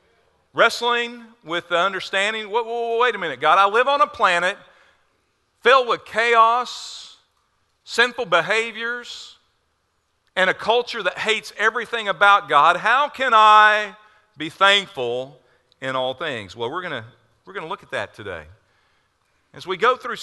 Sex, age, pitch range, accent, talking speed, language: male, 50-69, 150-215 Hz, American, 150 wpm, English